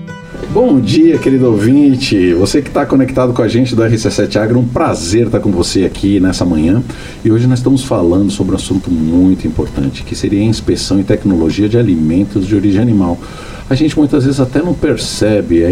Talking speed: 195 wpm